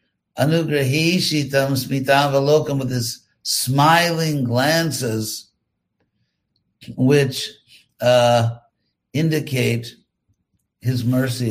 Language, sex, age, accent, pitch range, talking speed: English, male, 60-79, American, 115-135 Hz, 55 wpm